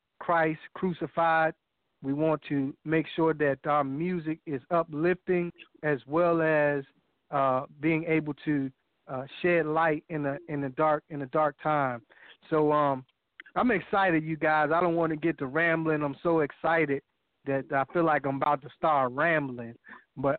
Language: English